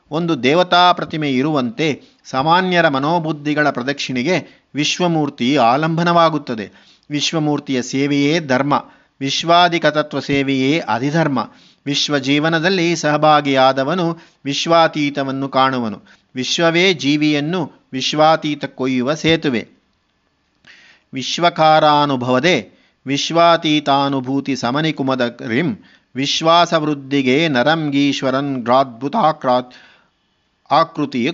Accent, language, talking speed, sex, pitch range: native, Kannada, 65 wpm, male, 135-165 Hz